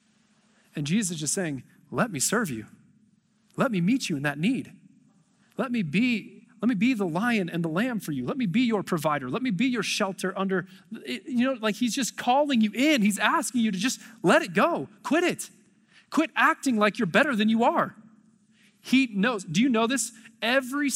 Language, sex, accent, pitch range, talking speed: English, male, American, 175-230 Hz, 210 wpm